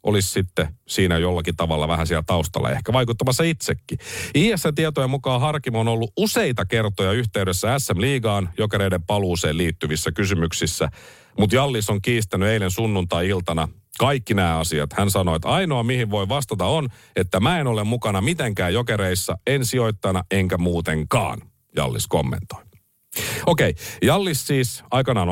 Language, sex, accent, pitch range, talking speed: Finnish, male, native, 95-140 Hz, 140 wpm